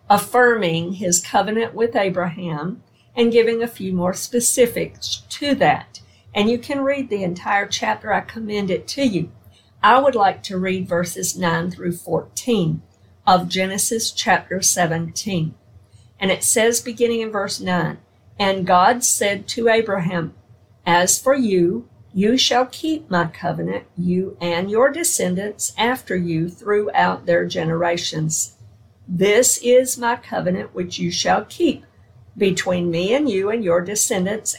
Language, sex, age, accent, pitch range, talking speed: English, female, 50-69, American, 170-230 Hz, 140 wpm